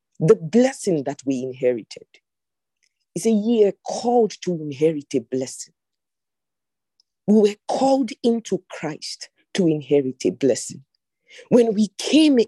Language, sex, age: English, female, 50-69